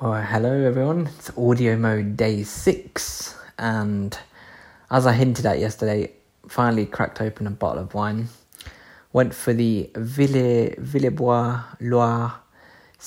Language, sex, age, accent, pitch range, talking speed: English, male, 20-39, British, 105-120 Hz, 125 wpm